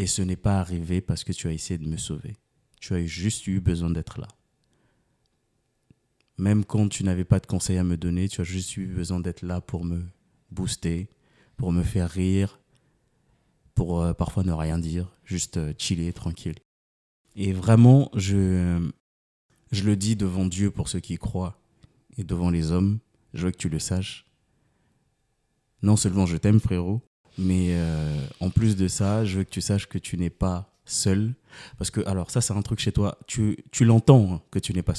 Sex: male